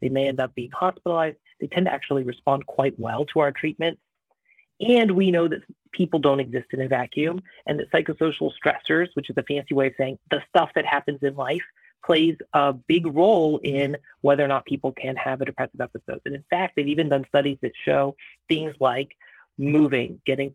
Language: English